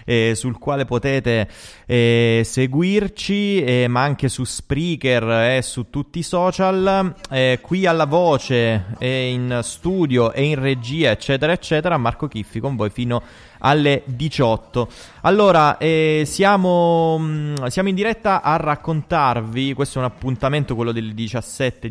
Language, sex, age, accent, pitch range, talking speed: Italian, male, 20-39, native, 115-150 Hz, 135 wpm